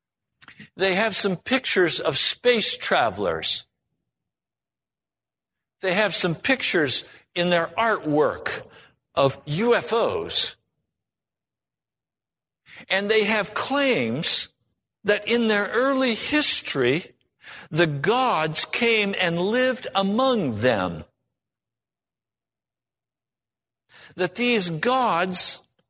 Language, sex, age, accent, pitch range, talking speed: English, male, 60-79, American, 135-220 Hz, 80 wpm